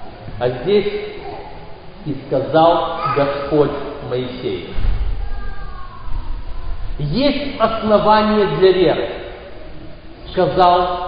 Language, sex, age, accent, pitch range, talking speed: Russian, male, 40-59, native, 160-225 Hz, 60 wpm